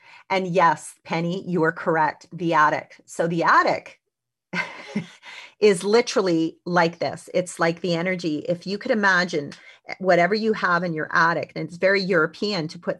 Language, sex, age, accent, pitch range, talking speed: English, female, 40-59, American, 160-200 Hz, 160 wpm